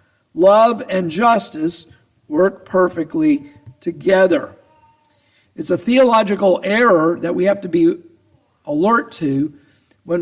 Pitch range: 160-215 Hz